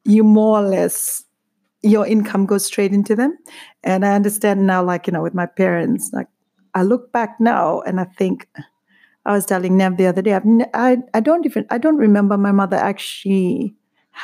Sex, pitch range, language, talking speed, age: female, 175-215 Hz, English, 200 wpm, 40-59